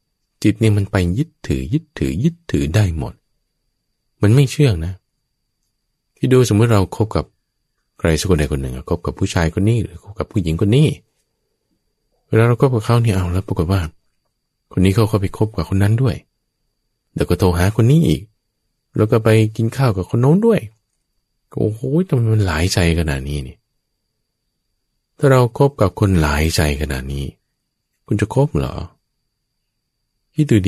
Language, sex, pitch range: English, male, 90-130 Hz